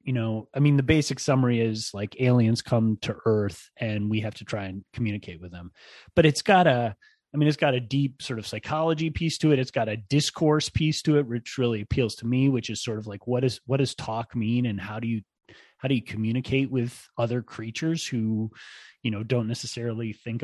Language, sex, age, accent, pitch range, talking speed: English, male, 30-49, American, 110-130 Hz, 230 wpm